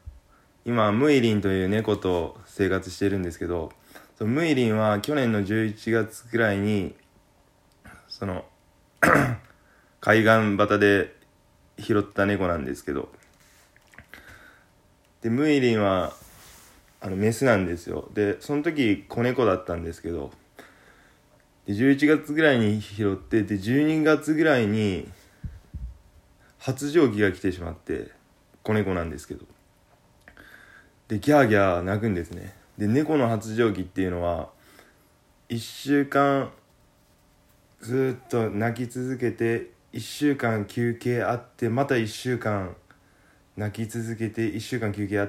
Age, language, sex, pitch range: 20-39, Japanese, male, 100-120 Hz